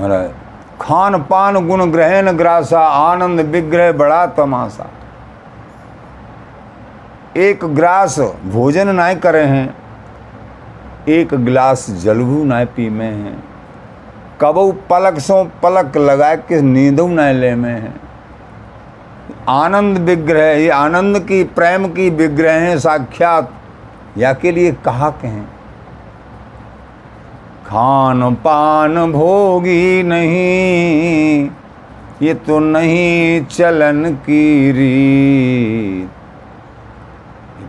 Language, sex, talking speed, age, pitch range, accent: Hindi, male, 95 wpm, 50-69, 120-170 Hz, native